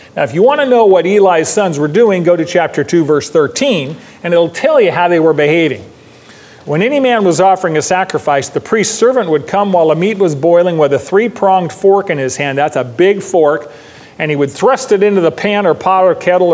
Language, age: English, 40-59